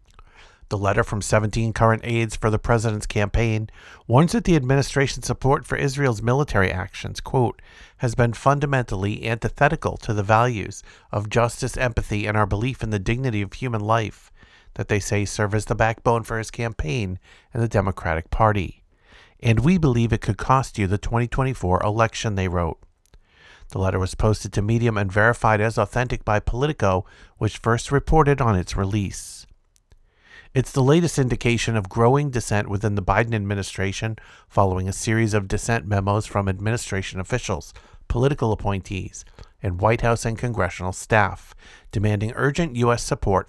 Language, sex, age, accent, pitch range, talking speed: English, male, 50-69, American, 100-120 Hz, 155 wpm